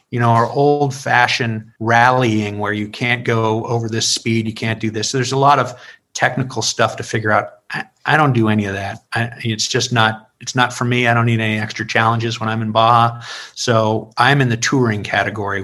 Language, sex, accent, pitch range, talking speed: English, male, American, 110-125 Hz, 220 wpm